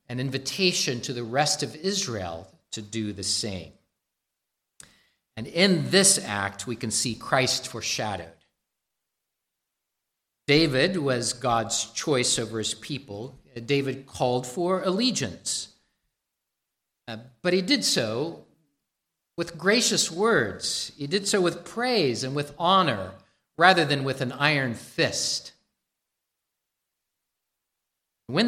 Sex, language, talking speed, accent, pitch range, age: male, English, 110 wpm, American, 115-170 Hz, 50-69